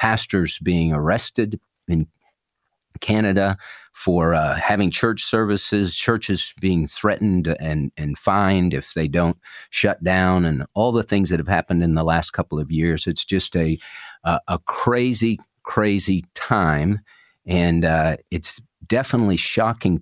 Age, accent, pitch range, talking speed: 50-69, American, 85-110 Hz, 140 wpm